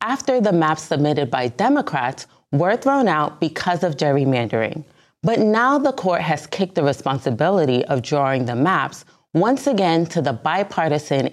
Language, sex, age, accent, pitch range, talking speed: English, female, 30-49, American, 135-200 Hz, 155 wpm